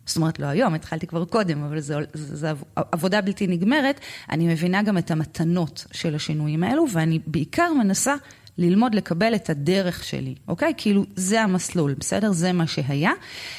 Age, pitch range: 20-39, 160-205 Hz